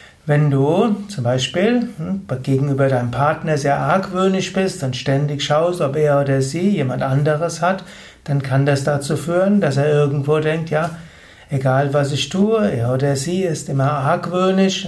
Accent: German